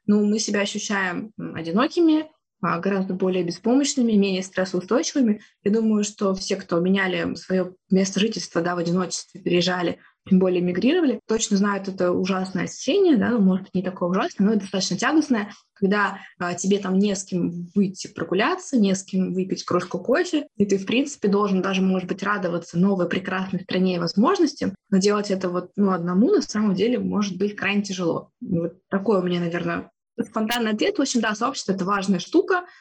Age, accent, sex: 20-39, native, female